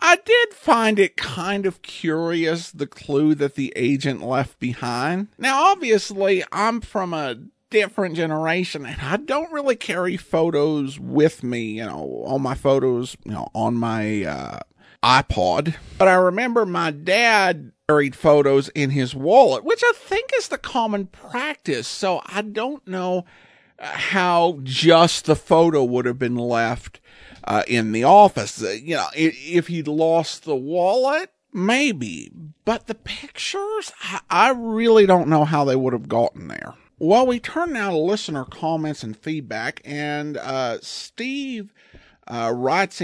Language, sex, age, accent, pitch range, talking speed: English, male, 50-69, American, 140-220 Hz, 150 wpm